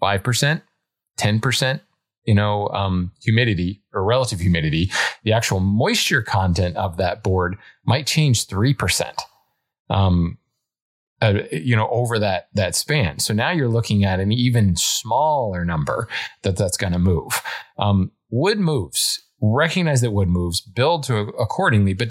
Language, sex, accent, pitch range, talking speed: English, male, American, 95-120 Hz, 140 wpm